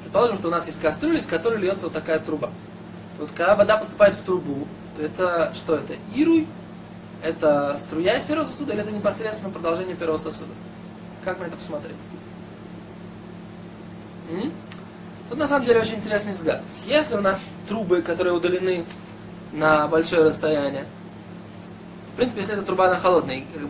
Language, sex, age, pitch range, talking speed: Russian, male, 20-39, 175-205 Hz, 165 wpm